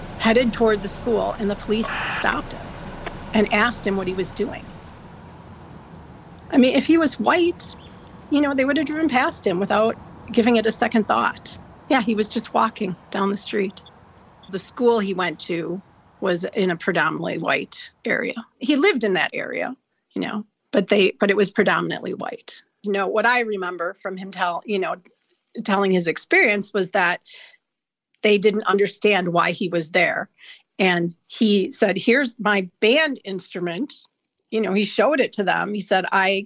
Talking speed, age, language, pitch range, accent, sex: 180 wpm, 40-59, English, 190-245 Hz, American, female